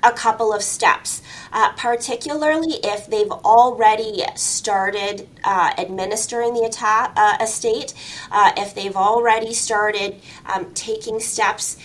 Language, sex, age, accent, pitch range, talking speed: English, female, 20-39, American, 195-240 Hz, 120 wpm